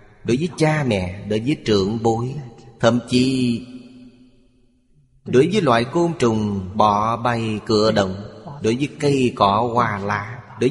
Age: 30-49